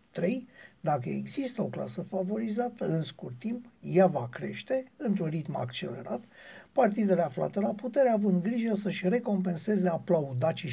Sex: male